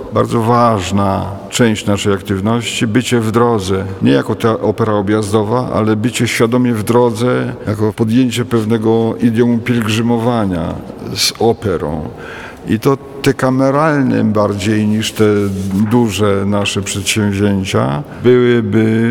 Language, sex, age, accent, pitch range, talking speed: Polish, male, 50-69, native, 100-120 Hz, 115 wpm